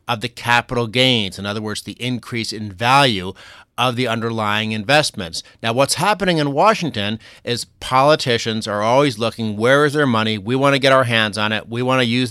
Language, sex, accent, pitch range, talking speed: English, male, American, 105-135 Hz, 200 wpm